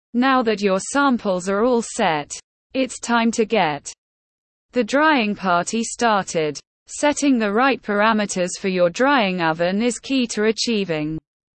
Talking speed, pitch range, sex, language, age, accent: 140 wpm, 180-250 Hz, female, English, 20-39, British